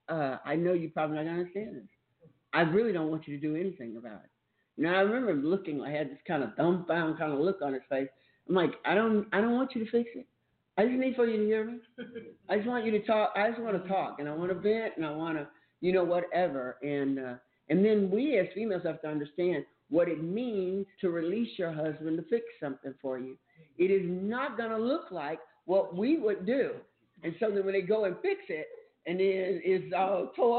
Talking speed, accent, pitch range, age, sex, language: 245 wpm, American, 145-195 Hz, 50-69, male, English